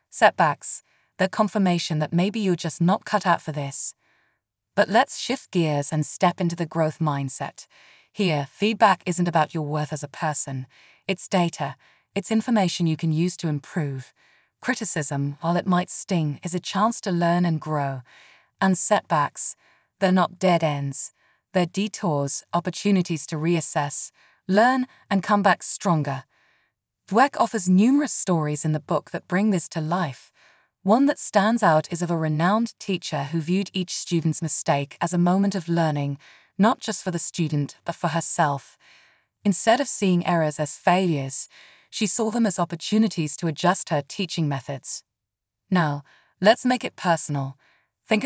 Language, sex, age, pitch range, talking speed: English, female, 20-39, 155-200 Hz, 160 wpm